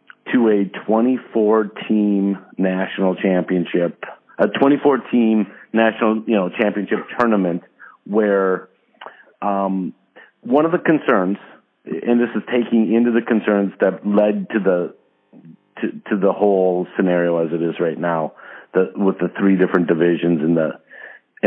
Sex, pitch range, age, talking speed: male, 95-115 Hz, 50-69, 130 wpm